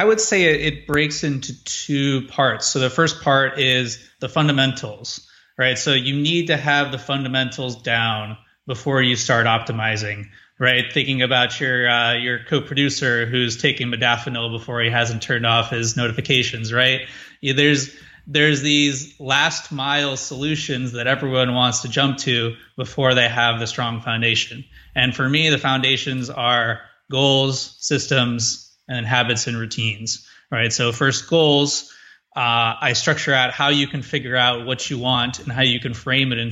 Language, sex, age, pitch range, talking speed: English, male, 20-39, 120-140 Hz, 165 wpm